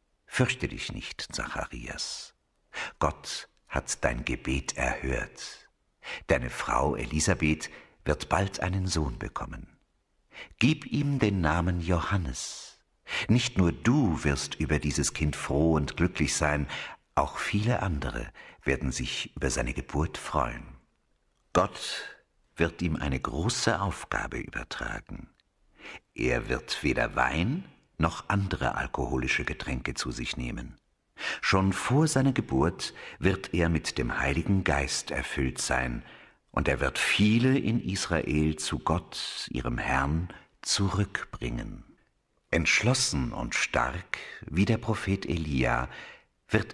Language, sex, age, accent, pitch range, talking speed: German, male, 60-79, German, 70-95 Hz, 115 wpm